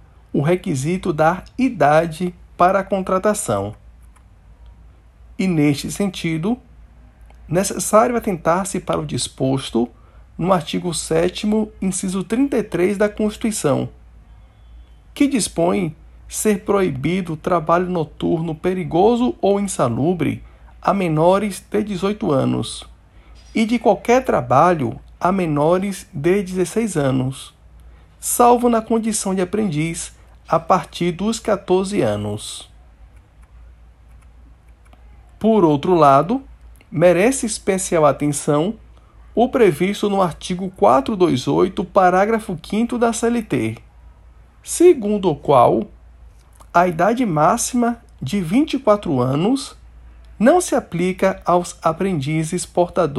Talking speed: 95 wpm